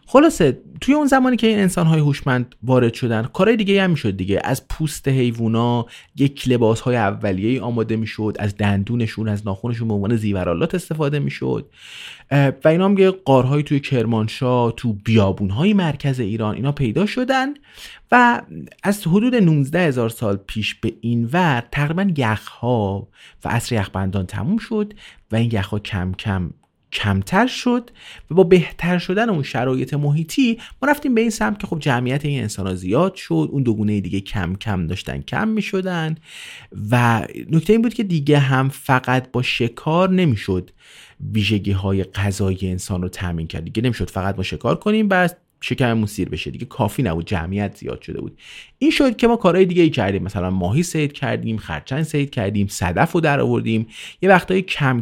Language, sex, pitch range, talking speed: Persian, male, 105-170 Hz, 175 wpm